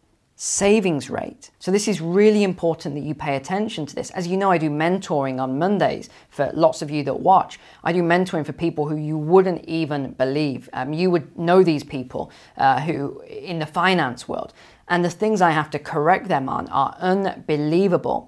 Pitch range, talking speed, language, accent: 145-180 Hz, 195 wpm, English, British